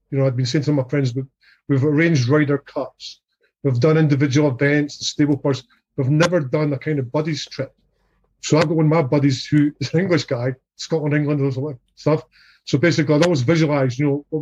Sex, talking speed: male, 225 wpm